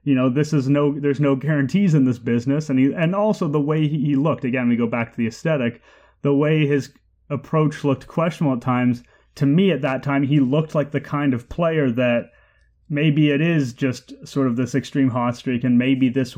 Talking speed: 225 wpm